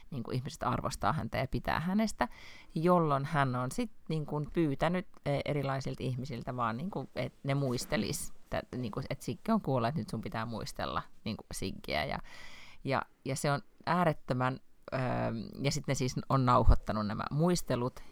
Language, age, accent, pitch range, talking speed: Finnish, 30-49, native, 120-150 Hz, 165 wpm